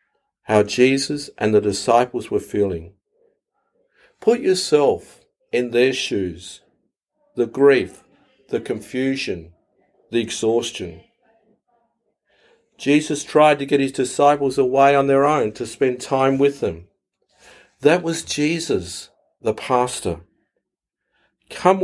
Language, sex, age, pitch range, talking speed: English, male, 50-69, 115-160 Hz, 105 wpm